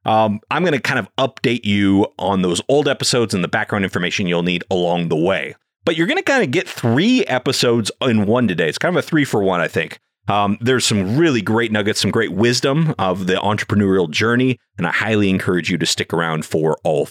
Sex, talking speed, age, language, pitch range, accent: male, 230 wpm, 30-49, English, 100-145 Hz, American